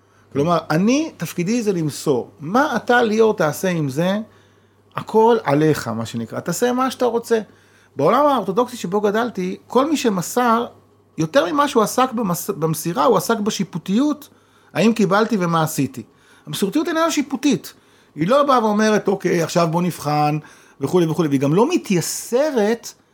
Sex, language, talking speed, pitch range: male, Hebrew, 145 wpm, 150-225 Hz